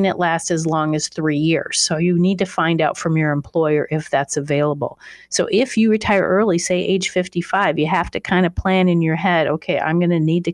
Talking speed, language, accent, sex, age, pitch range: 240 wpm, English, American, female, 40-59, 155-190 Hz